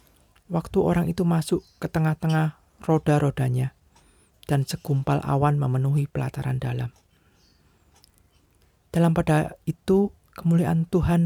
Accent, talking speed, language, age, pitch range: native, 95 wpm, Indonesian, 40-59, 100-155 Hz